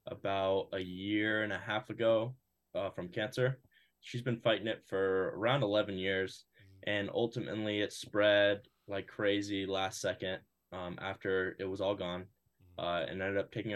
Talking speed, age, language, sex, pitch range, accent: 160 wpm, 10-29, English, male, 95-115 Hz, American